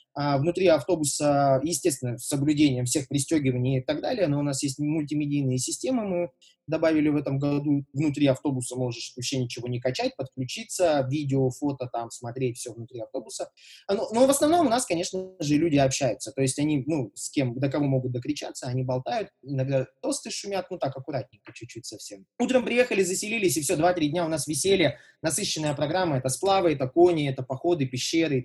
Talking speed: 180 wpm